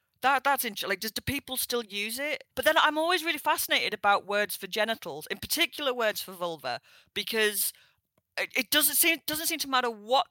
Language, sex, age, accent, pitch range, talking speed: English, female, 40-59, British, 195-260 Hz, 200 wpm